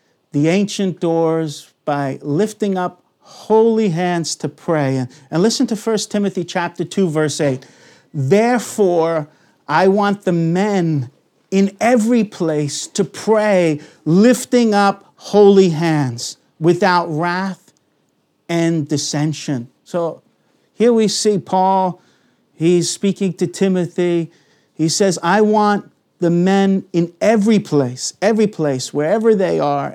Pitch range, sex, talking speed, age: 155-200 Hz, male, 120 wpm, 50-69